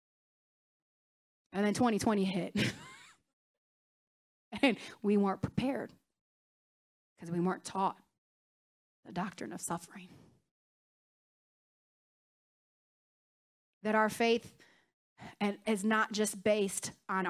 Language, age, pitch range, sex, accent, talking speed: English, 30-49, 200-270 Hz, female, American, 85 wpm